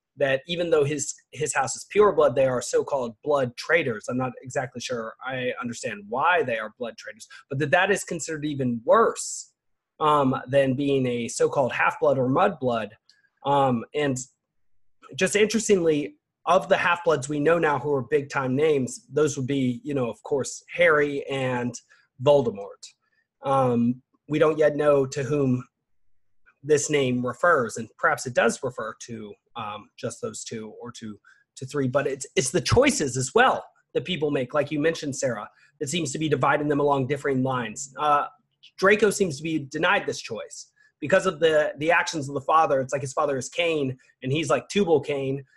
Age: 30-49